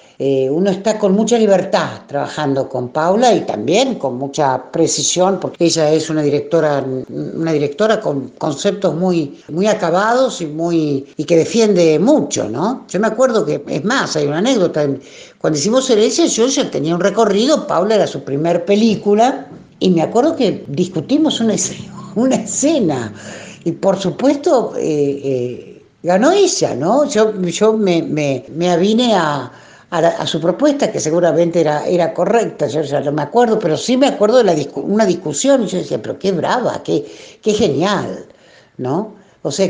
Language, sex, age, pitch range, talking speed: Spanish, female, 60-79, 150-215 Hz, 170 wpm